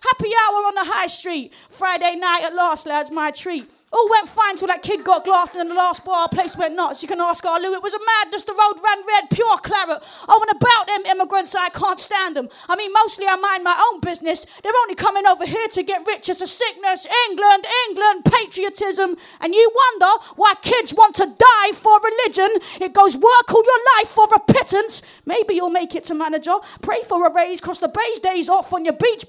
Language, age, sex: English, 20-39, female